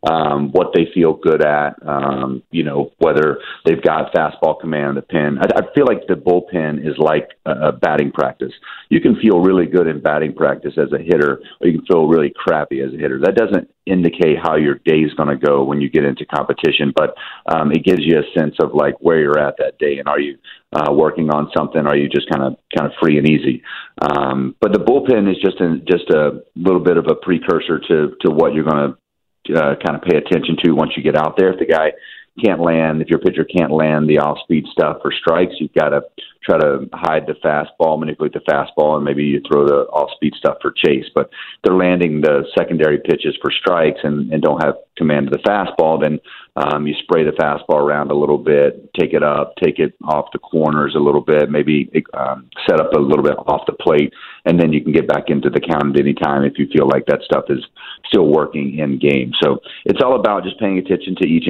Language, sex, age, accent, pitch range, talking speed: English, male, 40-59, American, 70-80 Hz, 235 wpm